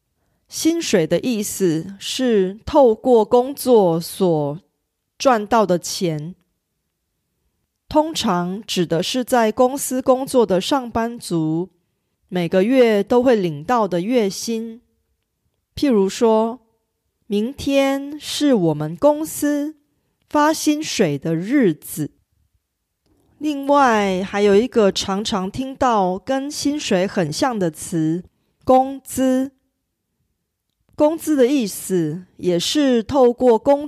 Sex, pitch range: female, 175-260 Hz